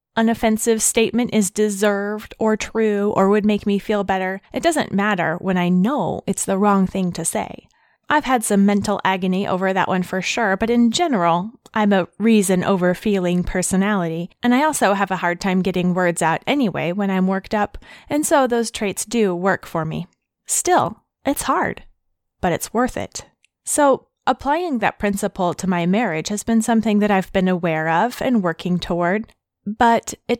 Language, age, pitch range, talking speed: English, 20-39, 185-240 Hz, 185 wpm